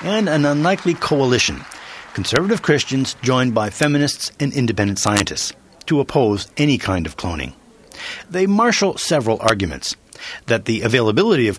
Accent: American